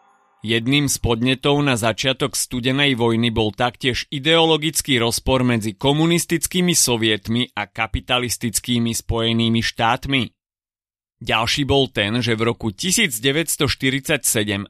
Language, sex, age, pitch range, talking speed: Slovak, male, 30-49, 115-145 Hz, 100 wpm